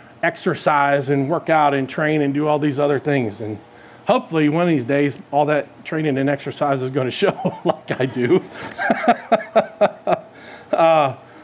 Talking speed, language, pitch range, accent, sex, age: 165 wpm, English, 145-195 Hz, American, male, 40-59